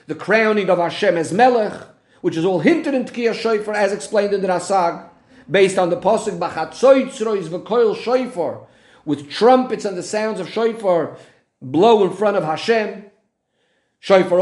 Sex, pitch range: male, 160-215 Hz